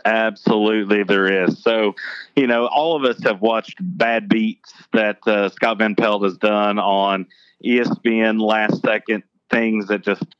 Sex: male